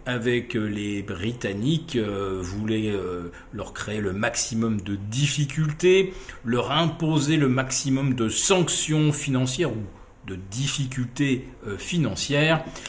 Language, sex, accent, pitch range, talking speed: French, male, French, 110-150 Hz, 105 wpm